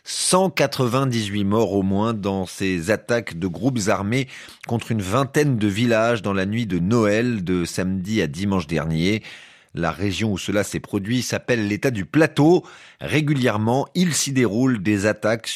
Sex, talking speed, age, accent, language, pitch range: male, 160 wpm, 30-49, French, French, 100-140 Hz